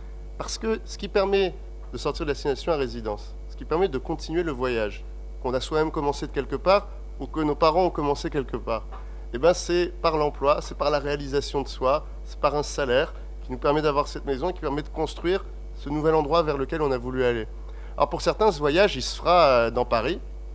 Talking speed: 230 wpm